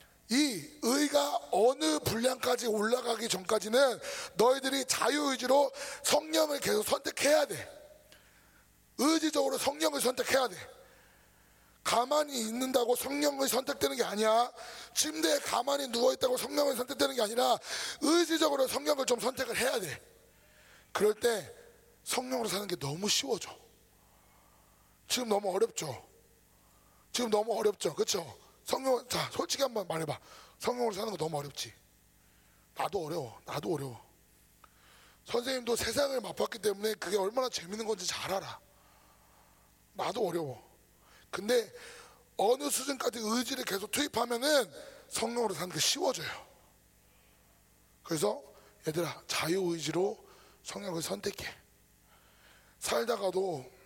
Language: Korean